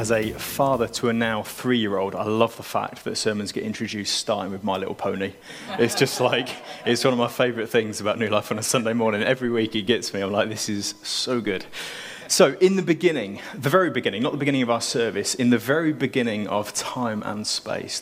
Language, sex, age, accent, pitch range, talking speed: English, male, 20-39, British, 105-130 Hz, 225 wpm